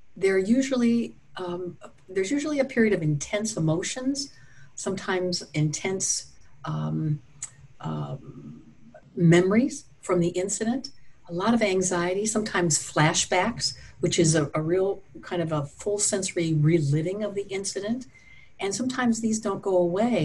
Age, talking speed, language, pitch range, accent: 60-79, 125 wpm, English, 160-210 Hz, American